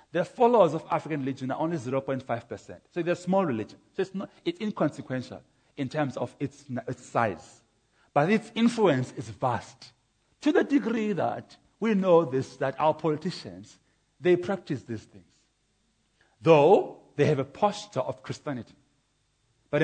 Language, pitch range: English, 130-175 Hz